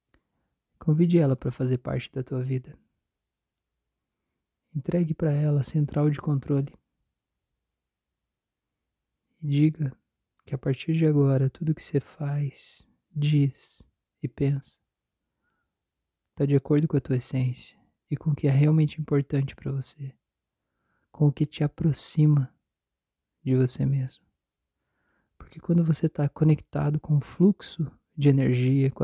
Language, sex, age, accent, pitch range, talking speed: Portuguese, male, 20-39, Brazilian, 130-150 Hz, 130 wpm